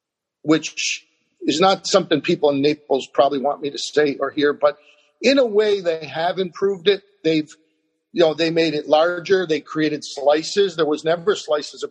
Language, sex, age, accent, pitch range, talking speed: English, male, 50-69, American, 155-215 Hz, 185 wpm